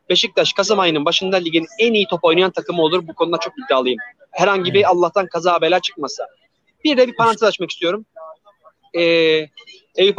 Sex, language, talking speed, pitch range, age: male, Turkish, 170 wpm, 180-245 Hz, 30-49